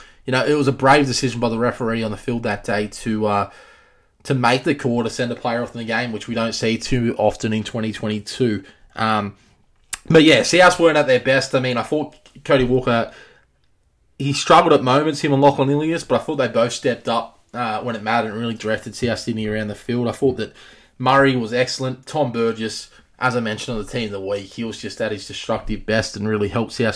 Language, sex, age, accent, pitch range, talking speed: English, male, 20-39, Australian, 110-130 Hz, 235 wpm